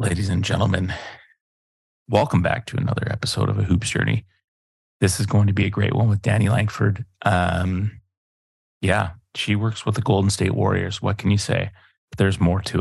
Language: English